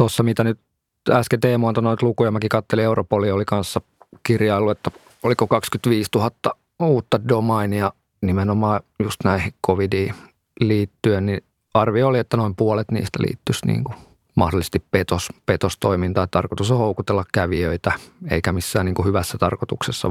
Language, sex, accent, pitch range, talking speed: Finnish, male, native, 100-115 Hz, 130 wpm